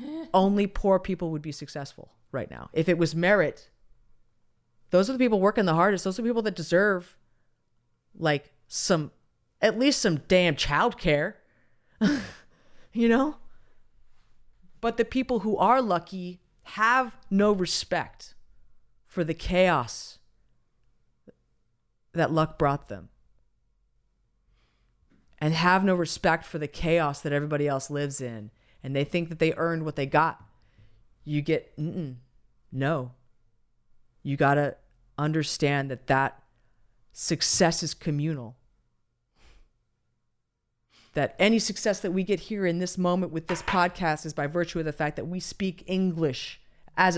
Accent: American